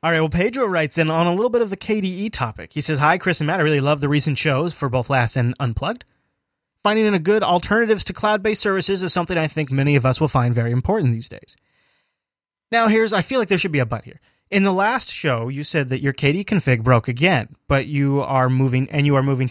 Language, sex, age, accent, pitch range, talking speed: English, male, 30-49, American, 130-170 Hz, 255 wpm